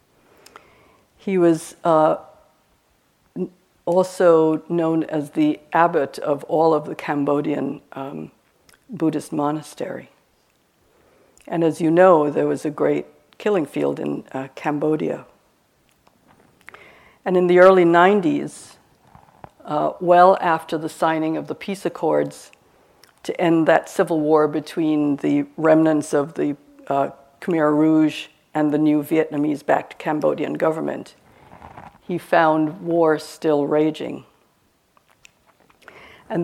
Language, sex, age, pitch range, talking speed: English, female, 60-79, 145-170 Hz, 110 wpm